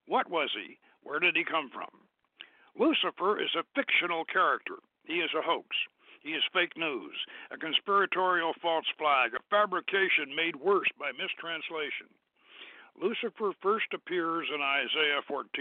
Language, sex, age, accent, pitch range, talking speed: English, male, 60-79, American, 185-270 Hz, 140 wpm